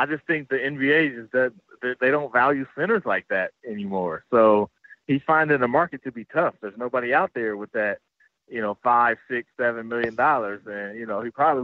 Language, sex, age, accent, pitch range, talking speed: English, male, 30-49, American, 115-150 Hz, 200 wpm